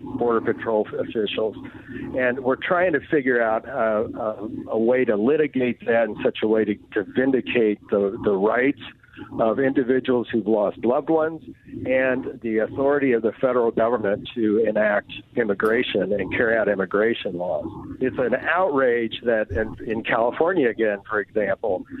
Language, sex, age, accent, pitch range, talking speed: English, male, 50-69, American, 115-140 Hz, 150 wpm